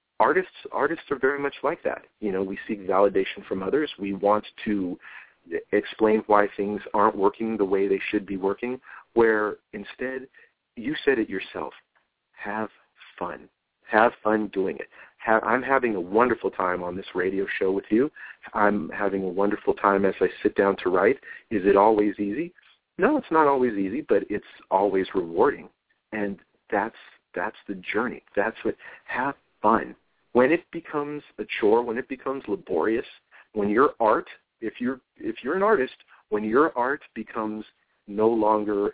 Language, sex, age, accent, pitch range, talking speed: English, male, 40-59, American, 100-125 Hz, 170 wpm